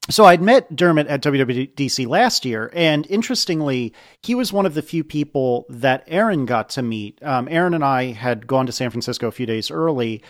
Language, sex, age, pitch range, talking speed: English, male, 40-59, 125-175 Hz, 205 wpm